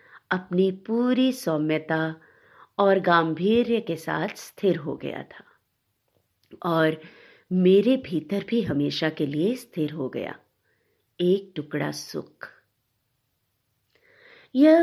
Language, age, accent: Hindi, 50-69, native